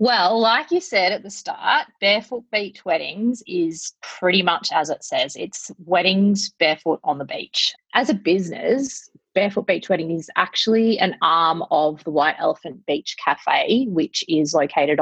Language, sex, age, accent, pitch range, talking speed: English, female, 30-49, Australian, 155-215 Hz, 165 wpm